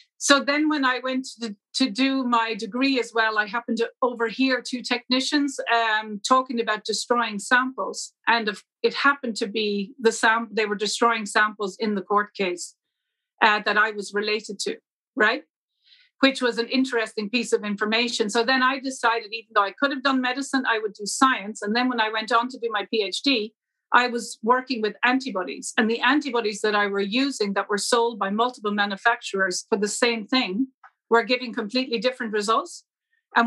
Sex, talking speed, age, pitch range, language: female, 185 wpm, 40-59, 215-255 Hz, English